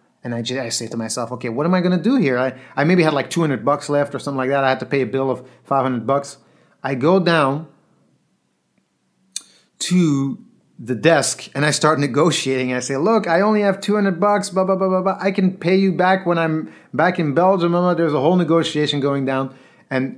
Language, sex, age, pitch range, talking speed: English, male, 30-49, 135-195 Hz, 225 wpm